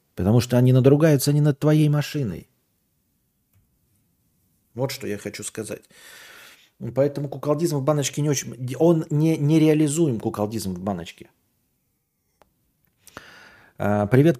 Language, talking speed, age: Russian, 110 wpm, 40-59